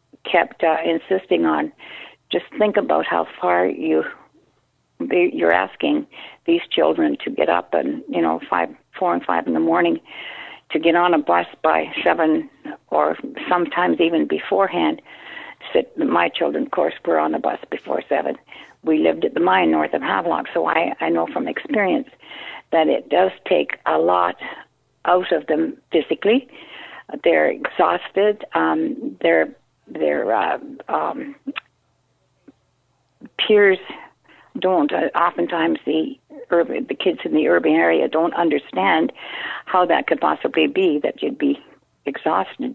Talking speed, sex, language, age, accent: 145 wpm, female, English, 50-69, American